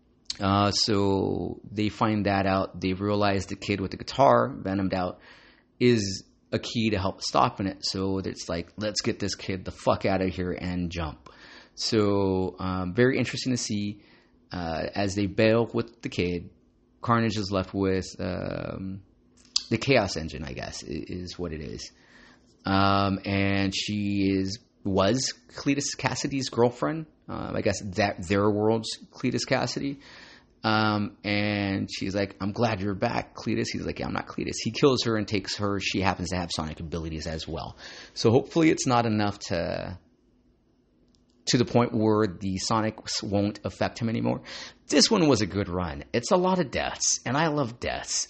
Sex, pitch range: male, 95-115 Hz